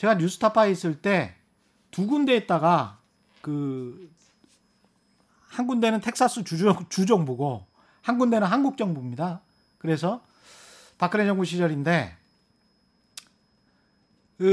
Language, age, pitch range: Korean, 40-59, 160-230 Hz